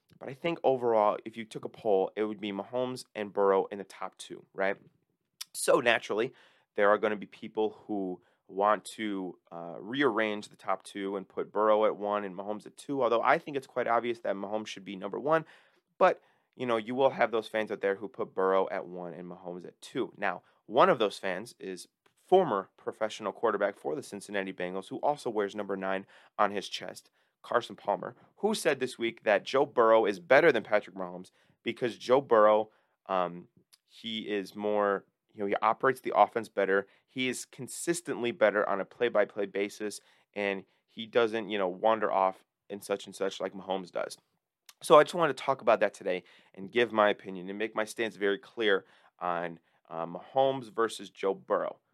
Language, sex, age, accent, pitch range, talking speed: English, male, 30-49, American, 95-115 Hz, 200 wpm